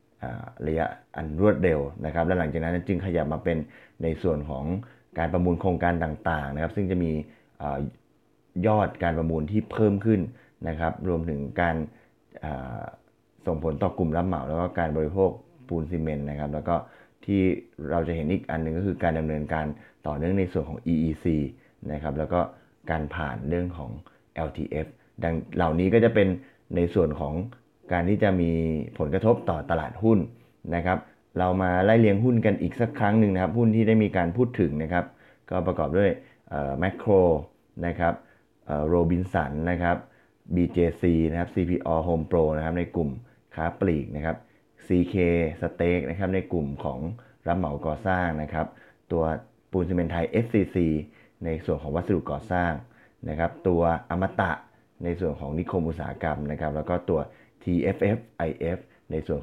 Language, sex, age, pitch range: Thai, male, 20-39, 80-95 Hz